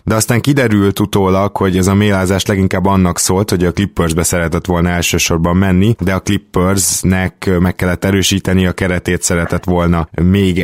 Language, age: Hungarian, 20-39